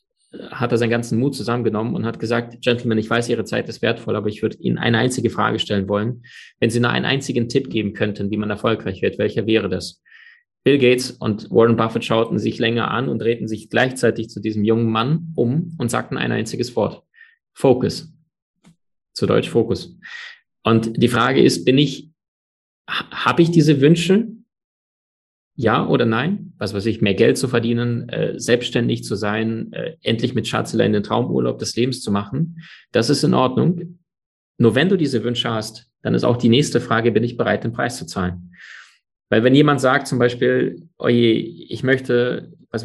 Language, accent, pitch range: German, German, 110-135 Hz